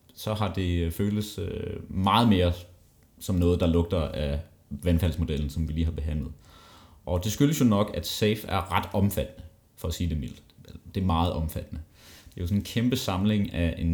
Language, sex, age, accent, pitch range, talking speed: Danish, male, 30-49, native, 85-105 Hz, 195 wpm